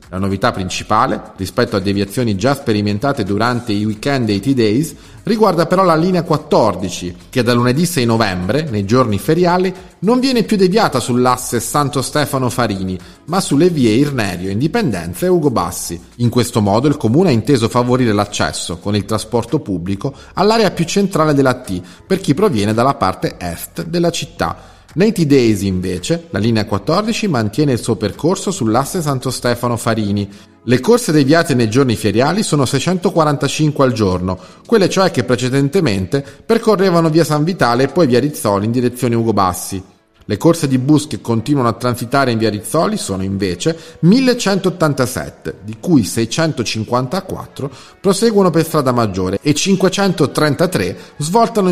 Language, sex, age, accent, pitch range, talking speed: Italian, male, 40-59, native, 105-165 Hz, 155 wpm